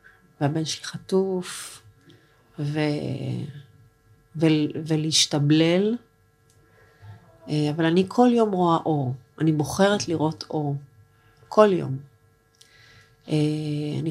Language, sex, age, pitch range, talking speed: Hebrew, female, 40-59, 140-180 Hz, 80 wpm